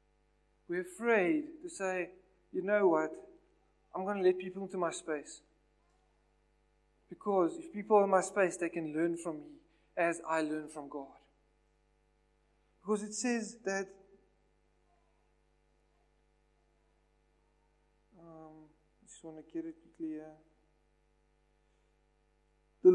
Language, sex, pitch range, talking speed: English, male, 180-240 Hz, 120 wpm